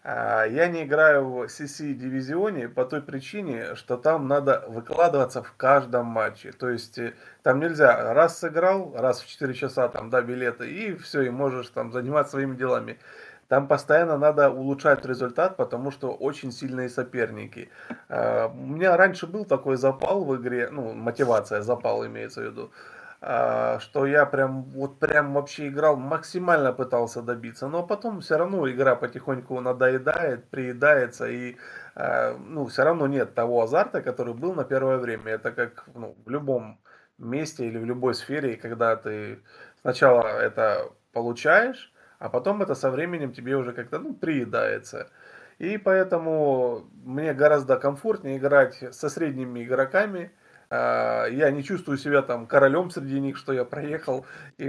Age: 20-39